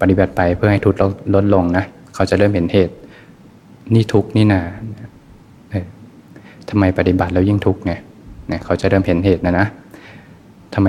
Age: 20-39